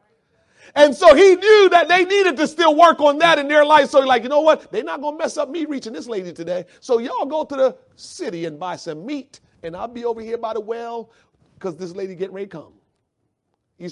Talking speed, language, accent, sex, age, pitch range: 250 wpm, English, American, male, 40-59, 190-280 Hz